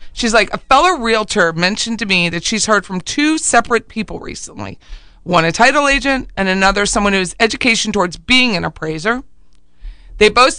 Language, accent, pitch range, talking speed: English, American, 180-220 Hz, 180 wpm